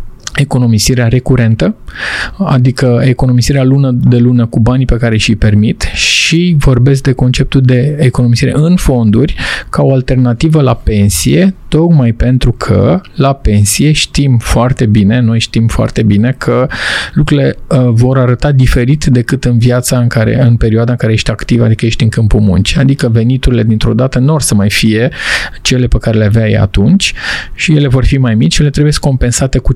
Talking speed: 170 wpm